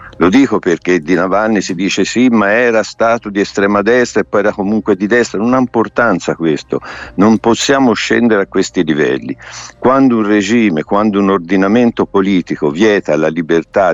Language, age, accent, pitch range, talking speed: Italian, 60-79, native, 100-130 Hz, 170 wpm